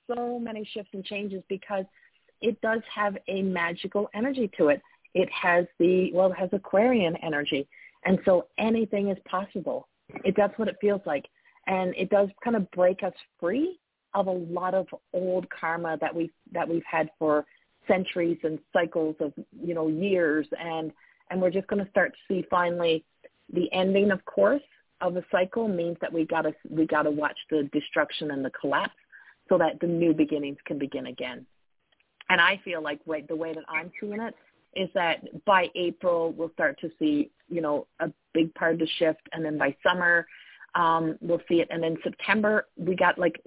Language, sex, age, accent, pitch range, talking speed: English, female, 40-59, American, 165-200 Hz, 190 wpm